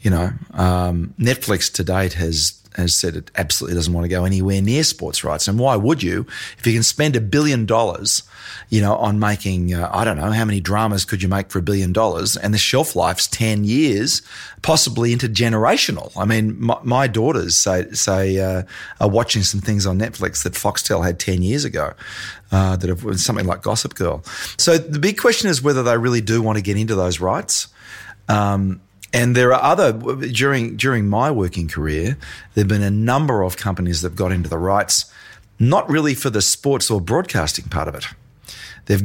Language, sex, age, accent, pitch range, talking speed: English, male, 30-49, Australian, 95-120 Hz, 205 wpm